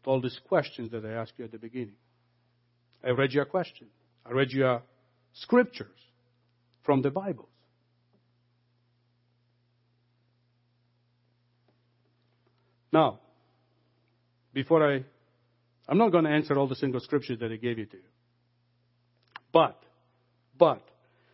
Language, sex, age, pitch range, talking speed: English, male, 60-79, 120-140 Hz, 115 wpm